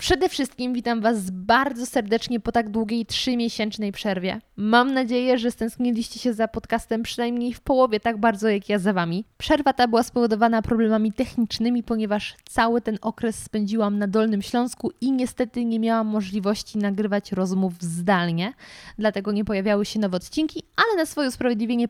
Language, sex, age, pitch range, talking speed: Polish, female, 20-39, 210-255 Hz, 160 wpm